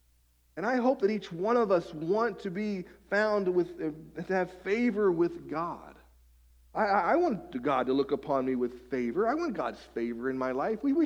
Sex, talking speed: male, 200 wpm